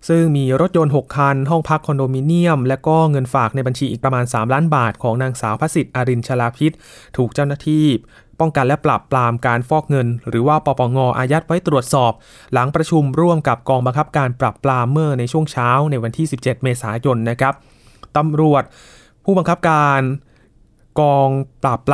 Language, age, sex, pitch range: Thai, 20-39, male, 125-150 Hz